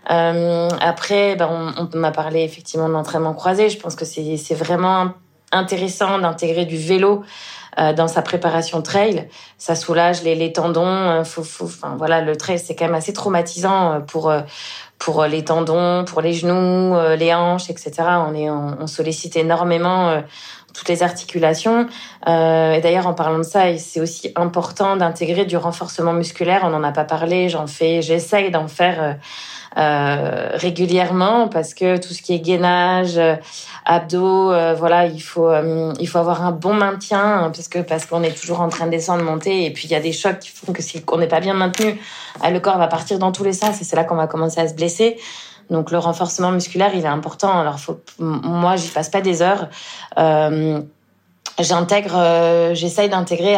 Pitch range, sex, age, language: 160-180 Hz, female, 20-39, French